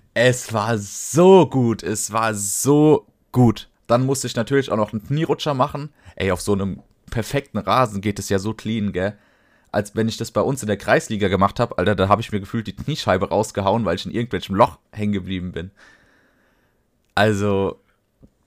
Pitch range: 95-115 Hz